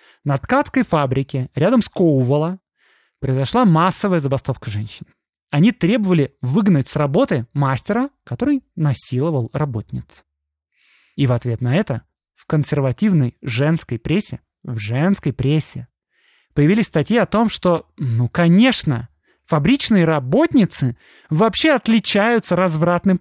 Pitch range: 135-195 Hz